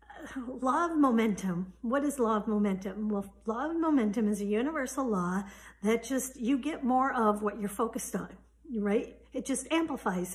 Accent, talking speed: American, 175 wpm